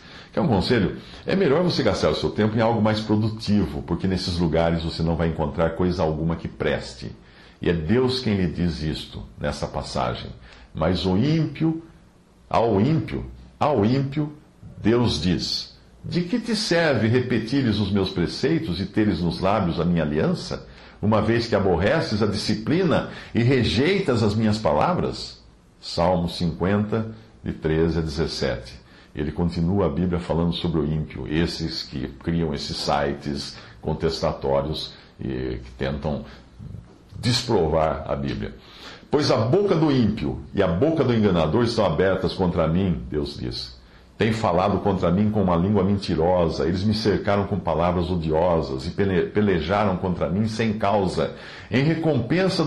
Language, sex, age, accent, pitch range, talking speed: English, male, 60-79, Brazilian, 80-110 Hz, 150 wpm